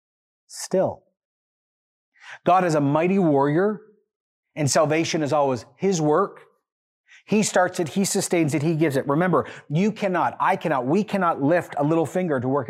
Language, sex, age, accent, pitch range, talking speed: English, male, 30-49, American, 120-170 Hz, 160 wpm